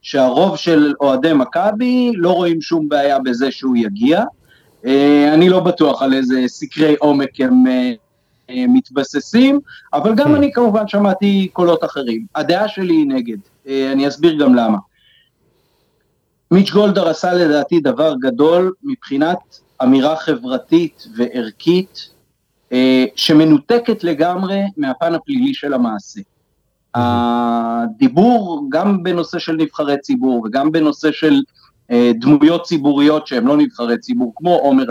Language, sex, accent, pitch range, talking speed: Hebrew, male, native, 145-225 Hz, 120 wpm